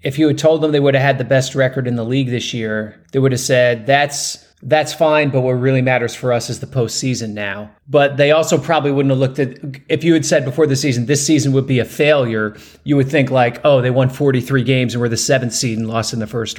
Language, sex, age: English, male, 30-49